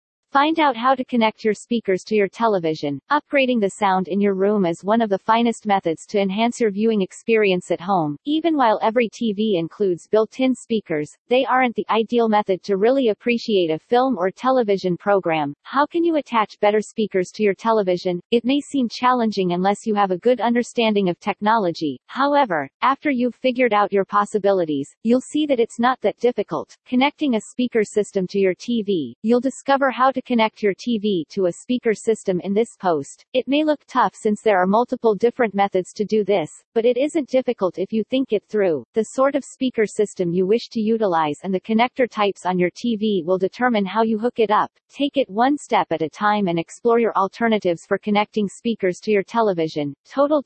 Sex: female